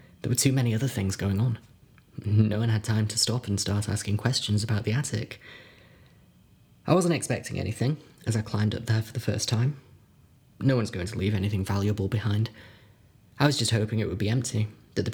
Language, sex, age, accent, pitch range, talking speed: English, male, 20-39, British, 105-125 Hz, 205 wpm